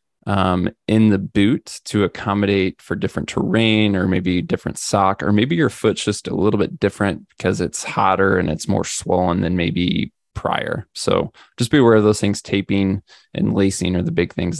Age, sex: 20-39, male